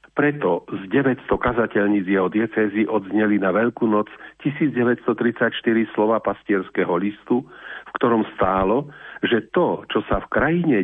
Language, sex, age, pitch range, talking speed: Slovak, male, 50-69, 105-130 Hz, 125 wpm